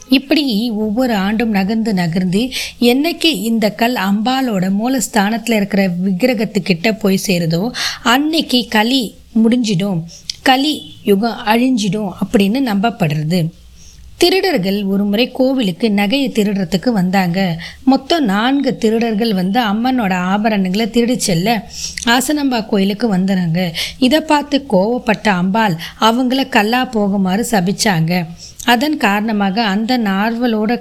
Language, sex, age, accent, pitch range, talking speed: Tamil, female, 20-39, native, 195-245 Hz, 105 wpm